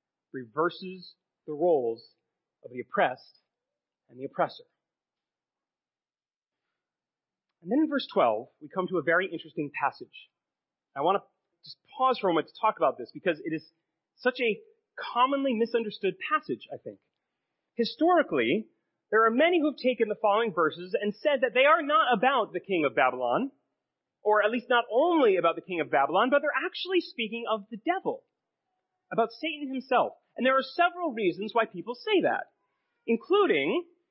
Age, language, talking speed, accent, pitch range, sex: 30-49, English, 165 wpm, American, 205-305 Hz, male